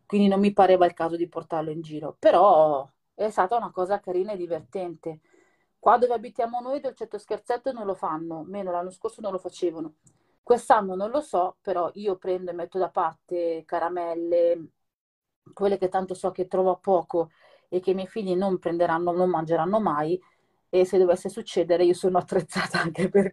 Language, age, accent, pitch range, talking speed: Italian, 30-49, native, 165-190 Hz, 185 wpm